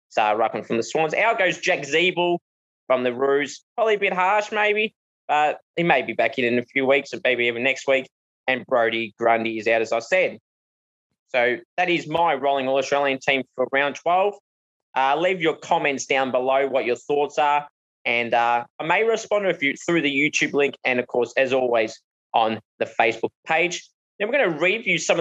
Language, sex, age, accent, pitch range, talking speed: English, male, 20-39, Australian, 130-170 Hz, 210 wpm